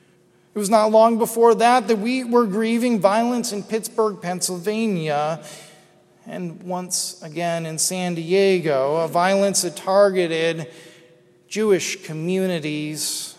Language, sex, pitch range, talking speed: English, male, 155-190 Hz, 115 wpm